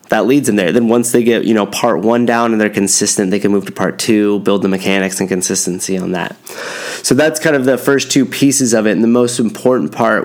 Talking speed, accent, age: 260 wpm, American, 20-39